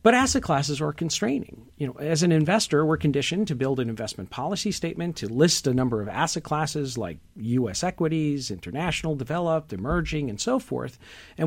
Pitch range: 140-185 Hz